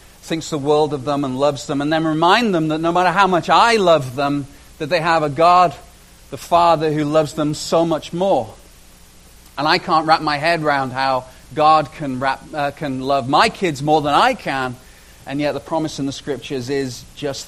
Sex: male